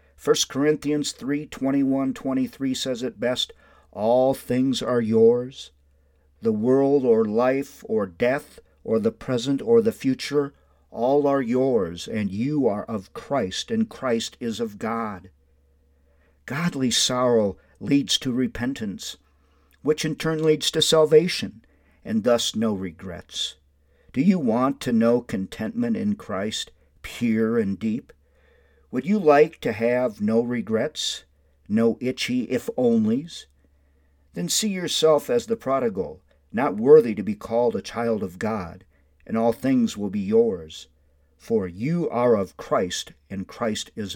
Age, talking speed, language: 50-69, 140 wpm, English